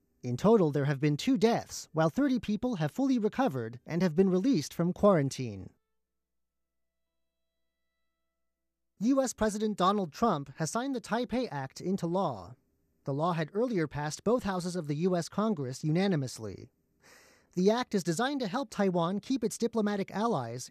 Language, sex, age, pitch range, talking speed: English, male, 30-49, 145-220 Hz, 155 wpm